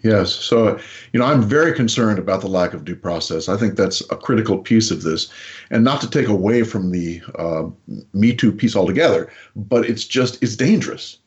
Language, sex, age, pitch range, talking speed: English, male, 50-69, 100-130 Hz, 200 wpm